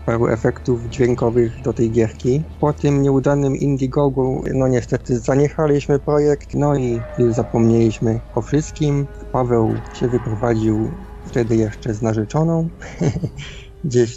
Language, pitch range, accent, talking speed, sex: Polish, 115-140 Hz, native, 115 wpm, male